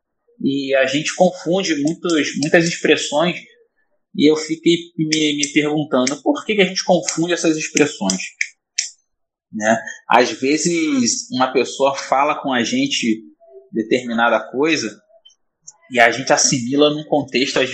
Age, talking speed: 20-39, 125 wpm